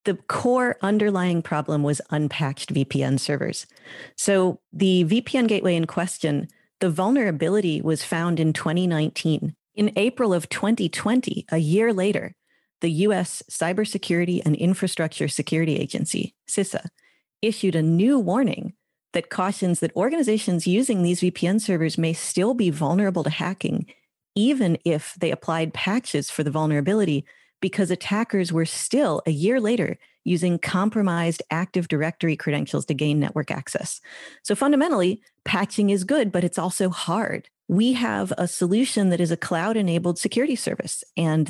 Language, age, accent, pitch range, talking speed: English, 40-59, American, 165-205 Hz, 140 wpm